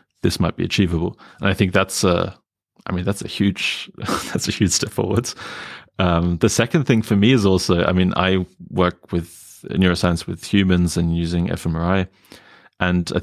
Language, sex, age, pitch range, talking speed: English, male, 30-49, 90-100 Hz, 185 wpm